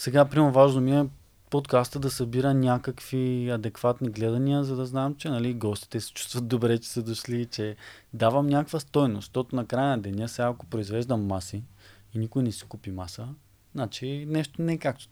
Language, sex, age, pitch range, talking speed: Bulgarian, male, 20-39, 110-140 Hz, 185 wpm